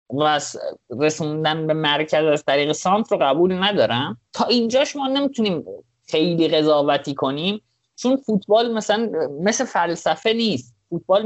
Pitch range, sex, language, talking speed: 125-195 Hz, male, Persian, 130 wpm